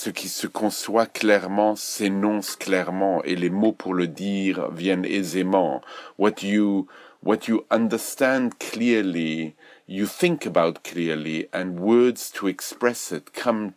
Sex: male